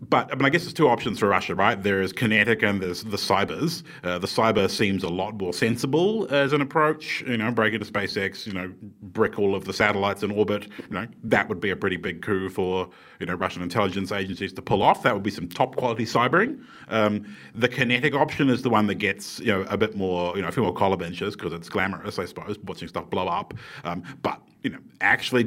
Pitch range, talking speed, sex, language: 95-115 Hz, 245 wpm, male, English